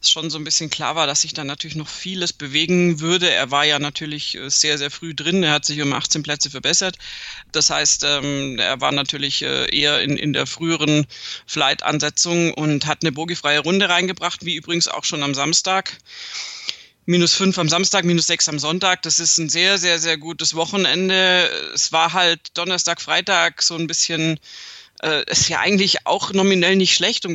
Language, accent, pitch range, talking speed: German, German, 150-175 Hz, 190 wpm